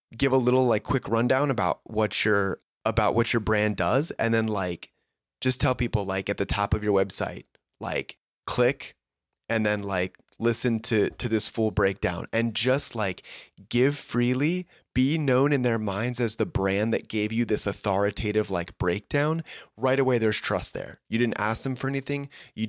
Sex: male